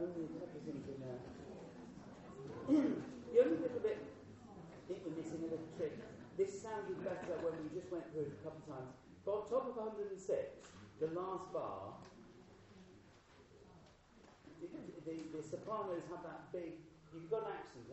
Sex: male